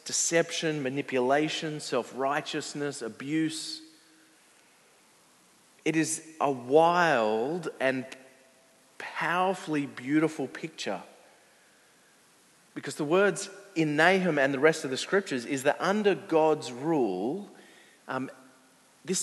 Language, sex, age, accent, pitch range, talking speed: English, male, 40-59, Australian, 130-160 Hz, 95 wpm